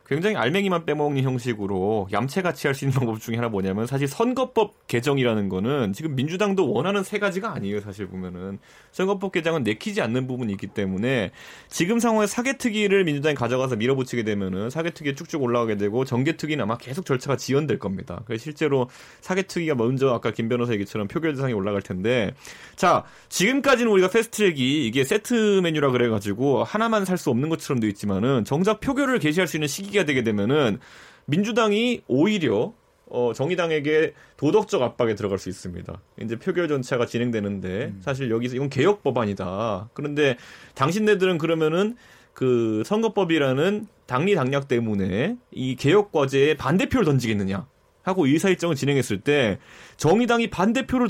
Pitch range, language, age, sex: 115-190 Hz, Korean, 30-49, male